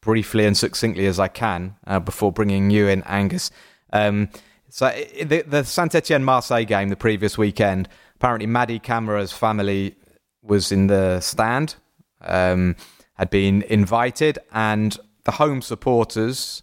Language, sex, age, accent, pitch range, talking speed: English, male, 30-49, British, 100-120 Hz, 135 wpm